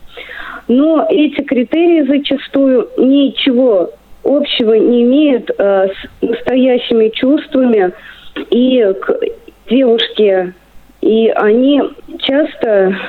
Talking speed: 85 wpm